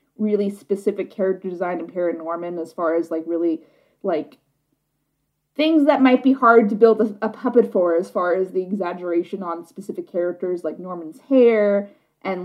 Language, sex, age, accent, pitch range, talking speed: English, female, 20-39, American, 170-215 Hz, 175 wpm